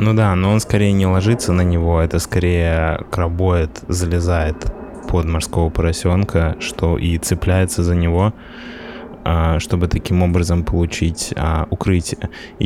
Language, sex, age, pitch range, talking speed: Russian, male, 20-39, 85-95 Hz, 125 wpm